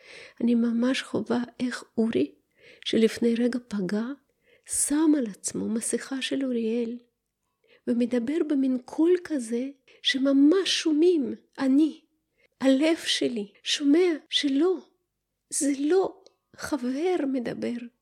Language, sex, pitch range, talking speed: Hebrew, female, 250-345 Hz, 95 wpm